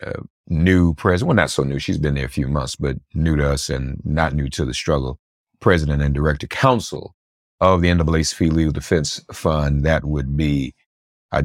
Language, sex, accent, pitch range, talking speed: English, male, American, 70-85 Hz, 195 wpm